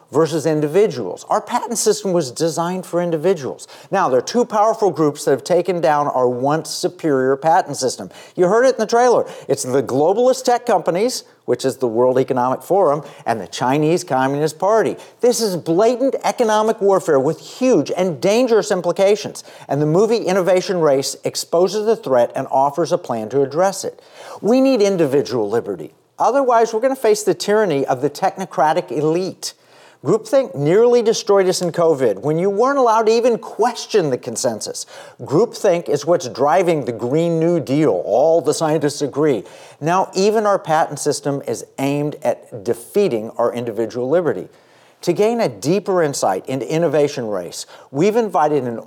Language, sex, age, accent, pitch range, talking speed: English, male, 50-69, American, 145-215 Hz, 165 wpm